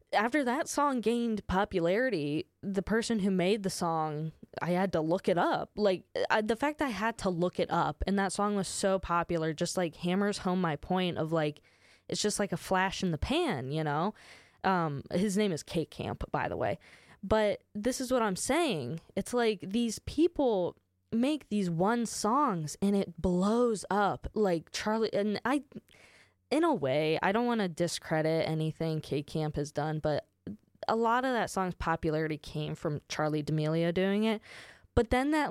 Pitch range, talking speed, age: 165-220 Hz, 185 wpm, 10-29